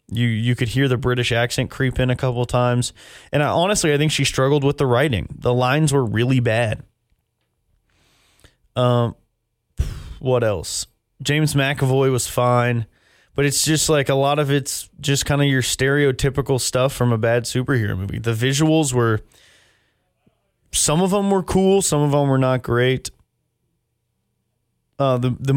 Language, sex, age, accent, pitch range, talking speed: English, male, 20-39, American, 115-140 Hz, 165 wpm